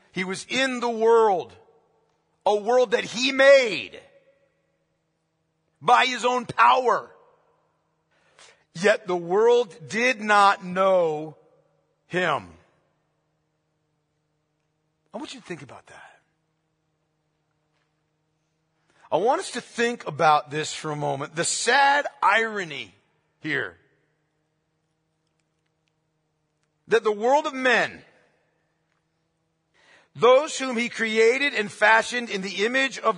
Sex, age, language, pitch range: male, 50-69, English, 155-240 Hz